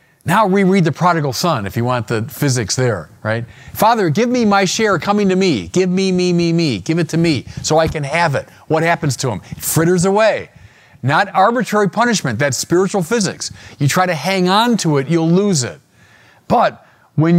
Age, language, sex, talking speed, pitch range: 40-59, English, male, 205 wpm, 115-175 Hz